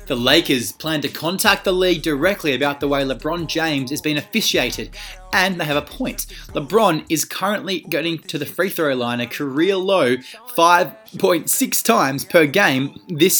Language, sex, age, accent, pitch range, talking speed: English, male, 20-39, Australian, 135-175 Hz, 170 wpm